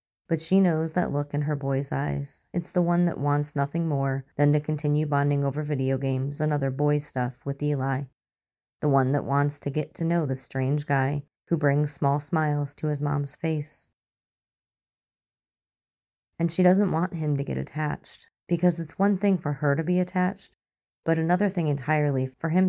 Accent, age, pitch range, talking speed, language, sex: American, 30-49, 140-155 Hz, 190 wpm, English, female